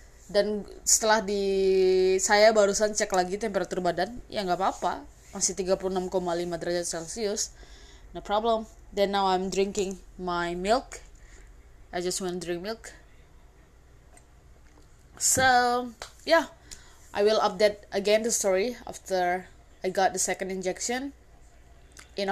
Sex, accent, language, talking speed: female, native, Indonesian, 120 wpm